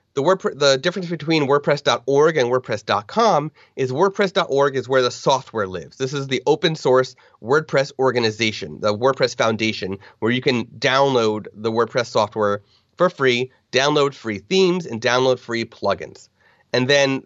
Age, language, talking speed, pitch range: 30-49, English, 145 wpm, 115-150 Hz